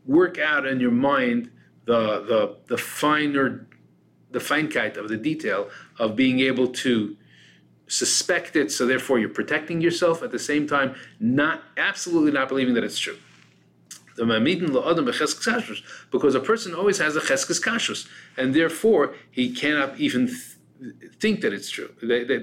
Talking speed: 145 wpm